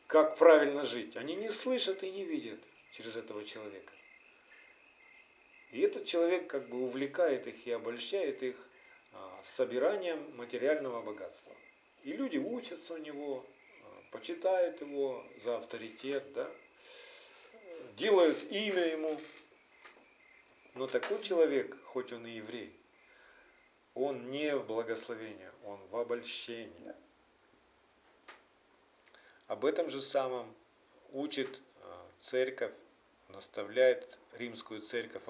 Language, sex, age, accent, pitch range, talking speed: Russian, male, 50-69, native, 125-200 Hz, 100 wpm